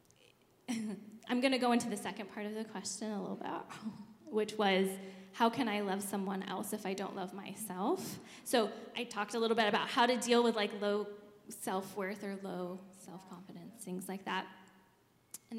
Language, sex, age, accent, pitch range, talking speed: English, female, 10-29, American, 200-235 Hz, 185 wpm